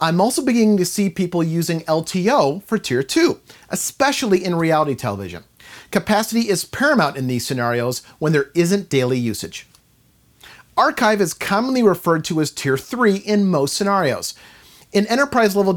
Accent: American